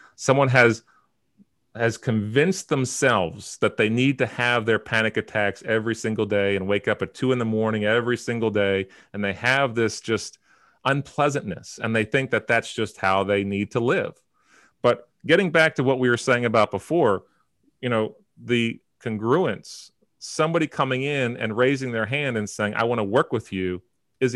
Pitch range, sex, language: 100-125 Hz, male, English